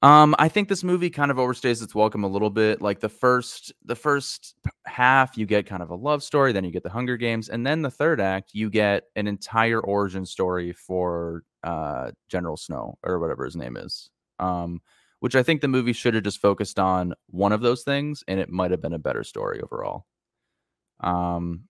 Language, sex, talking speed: English, male, 215 wpm